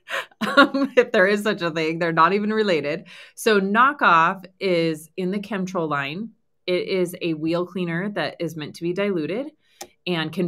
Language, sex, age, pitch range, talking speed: English, female, 20-39, 155-190 Hz, 180 wpm